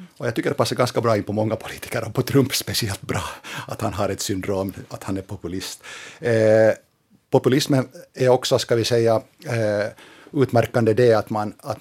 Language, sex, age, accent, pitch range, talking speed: Finnish, male, 50-69, native, 105-120 Hz, 195 wpm